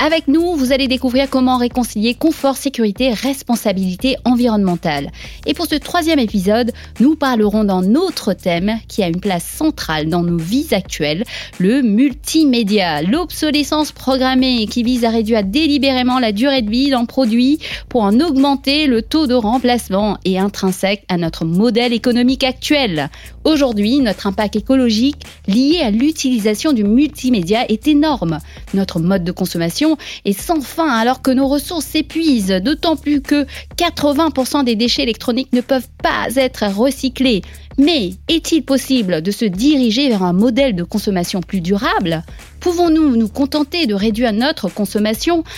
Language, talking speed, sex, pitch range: French, 150 wpm, female, 210-285 Hz